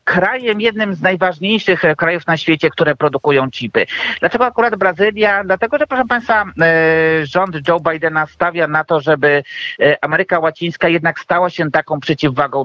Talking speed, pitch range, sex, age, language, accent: 145 wpm, 150-180 Hz, male, 50-69, Polish, native